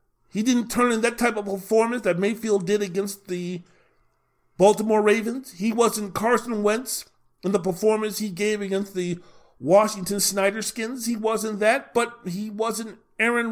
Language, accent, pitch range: English, American, 170-230 Hz